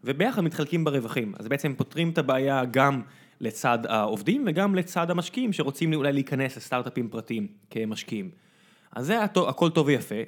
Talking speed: 145 wpm